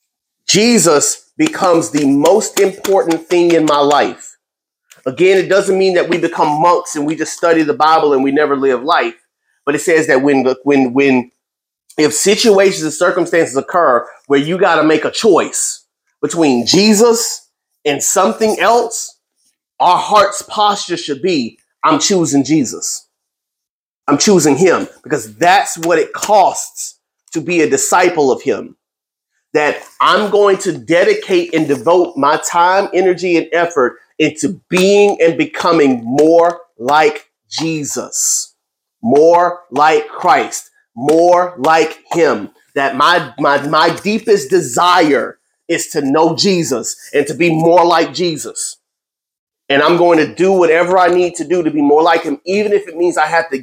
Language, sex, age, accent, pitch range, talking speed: English, male, 30-49, American, 150-195 Hz, 155 wpm